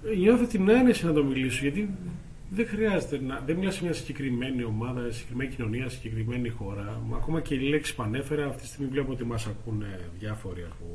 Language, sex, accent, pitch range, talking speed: Greek, male, native, 115-150 Hz, 190 wpm